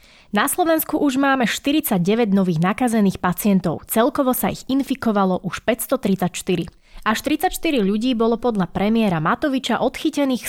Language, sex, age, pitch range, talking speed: Slovak, female, 20-39, 190-250 Hz, 125 wpm